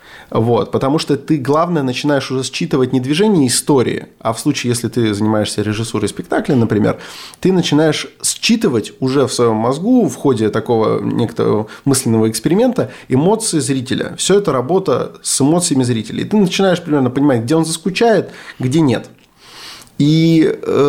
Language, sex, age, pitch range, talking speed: Russian, male, 20-39, 120-155 Hz, 145 wpm